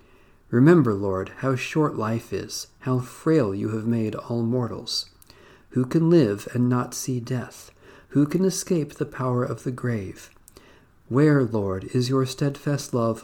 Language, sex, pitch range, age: English, male, 100-135 Hz, 50-69